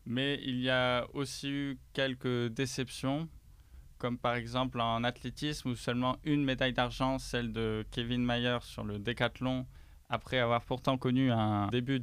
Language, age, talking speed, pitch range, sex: French, 20-39, 155 wpm, 115-135 Hz, male